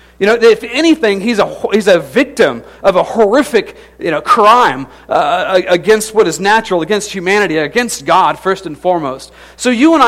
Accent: American